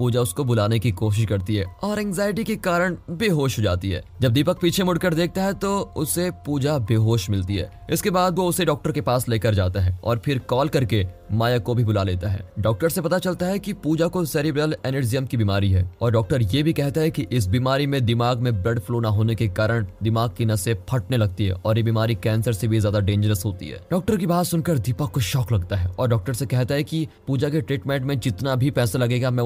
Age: 20-39